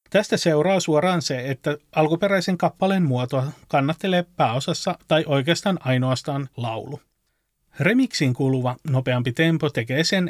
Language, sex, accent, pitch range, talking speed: Finnish, male, native, 130-165 Hz, 115 wpm